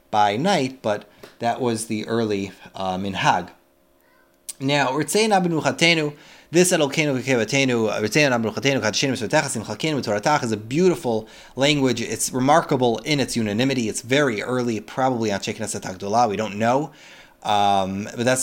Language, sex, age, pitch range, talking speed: English, male, 30-49, 105-140 Hz, 100 wpm